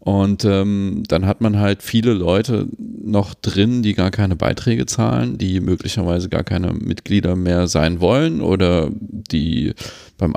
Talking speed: 150 wpm